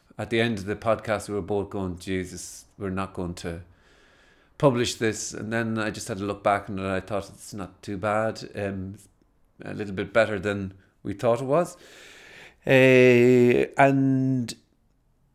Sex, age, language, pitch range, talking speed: male, 40-59, English, 95-115 Hz, 175 wpm